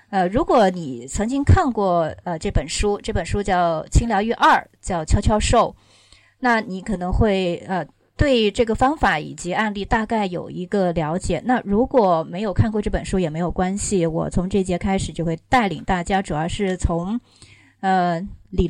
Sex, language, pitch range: female, Chinese, 165-215 Hz